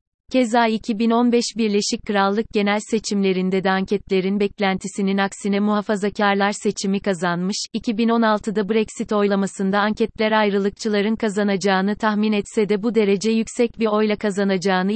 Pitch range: 195-220 Hz